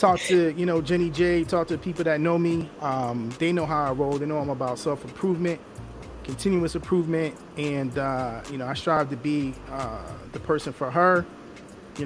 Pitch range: 140-175 Hz